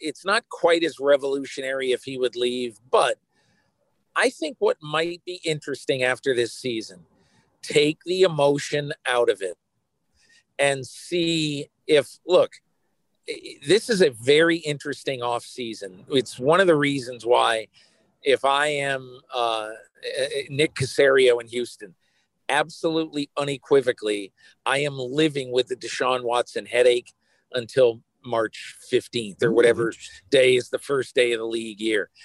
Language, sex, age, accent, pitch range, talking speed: English, male, 50-69, American, 125-175 Hz, 140 wpm